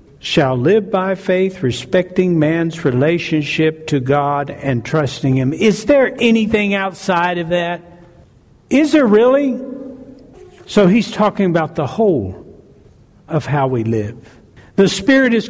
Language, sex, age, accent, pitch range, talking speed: English, male, 60-79, American, 170-220 Hz, 130 wpm